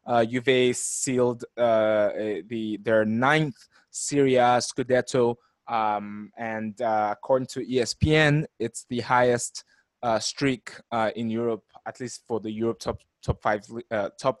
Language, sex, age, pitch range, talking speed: English, male, 20-39, 110-135 Hz, 140 wpm